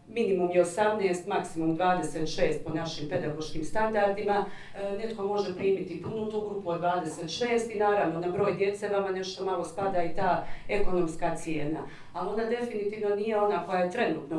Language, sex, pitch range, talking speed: Croatian, female, 170-205 Hz, 155 wpm